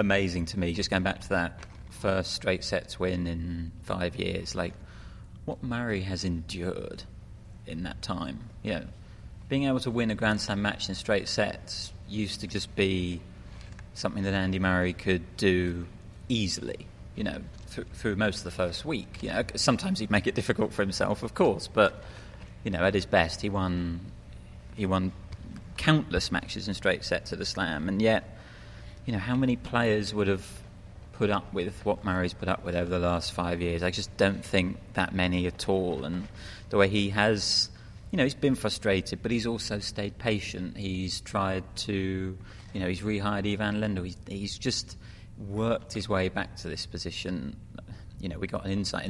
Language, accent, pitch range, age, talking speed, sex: English, British, 90-105 Hz, 30-49, 190 wpm, male